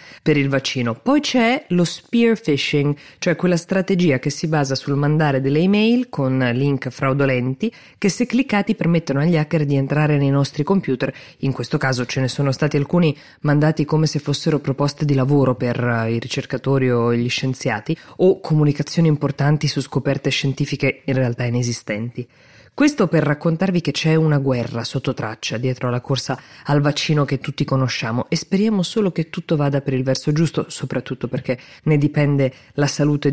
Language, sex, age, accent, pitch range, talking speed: Italian, female, 20-39, native, 130-155 Hz, 170 wpm